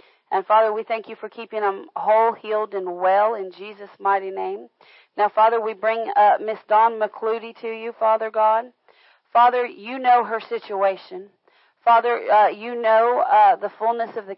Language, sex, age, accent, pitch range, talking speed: English, female, 40-59, American, 200-230 Hz, 175 wpm